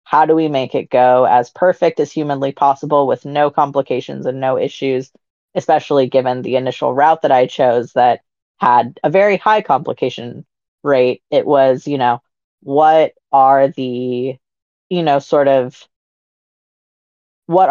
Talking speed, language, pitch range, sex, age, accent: 150 wpm, English, 130-155 Hz, female, 30-49, American